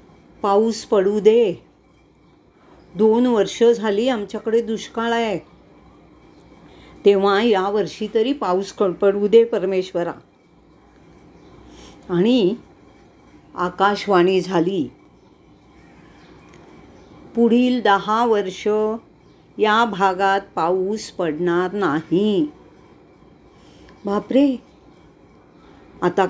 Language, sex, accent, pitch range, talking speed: English, female, Indian, 185-230 Hz, 70 wpm